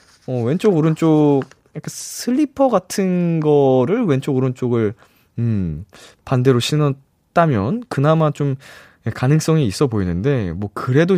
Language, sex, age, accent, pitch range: Korean, male, 20-39, native, 105-160 Hz